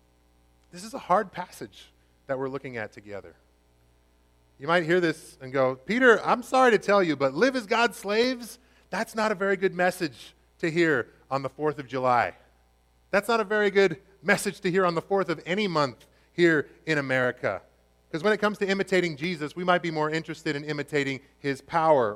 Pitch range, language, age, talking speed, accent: 125-190 Hz, English, 30-49, 200 wpm, American